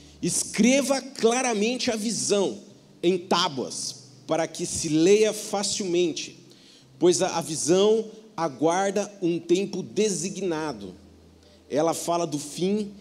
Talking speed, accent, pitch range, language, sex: 100 wpm, Brazilian, 175-225 Hz, Portuguese, male